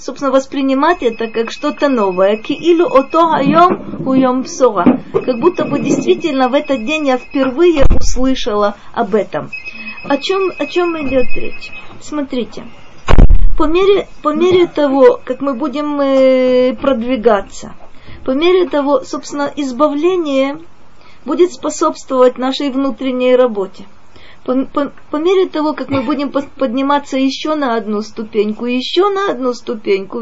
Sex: female